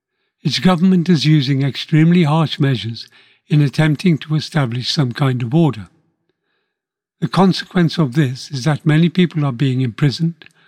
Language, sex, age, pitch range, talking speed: English, male, 60-79, 135-170 Hz, 145 wpm